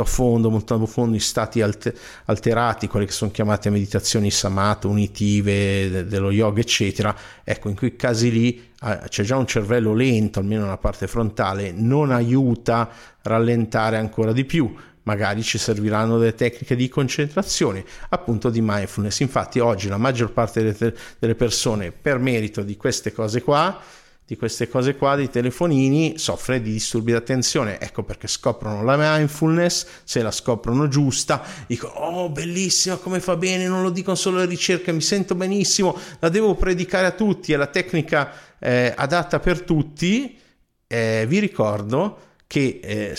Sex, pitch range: male, 105-135 Hz